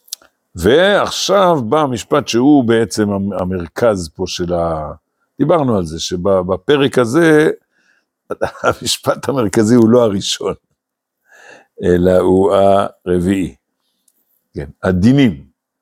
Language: Hebrew